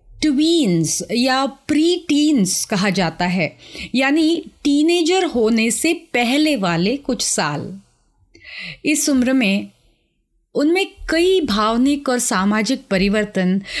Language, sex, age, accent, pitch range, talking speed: Hindi, female, 30-49, native, 200-310 Hz, 105 wpm